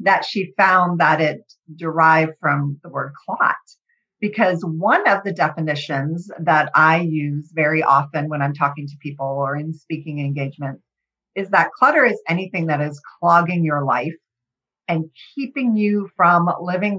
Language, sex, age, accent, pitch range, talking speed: English, female, 40-59, American, 150-205 Hz, 155 wpm